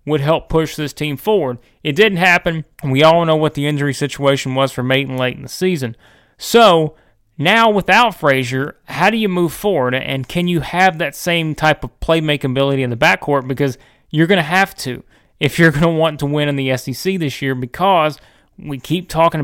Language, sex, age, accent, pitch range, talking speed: English, male, 30-49, American, 135-170 Hz, 200 wpm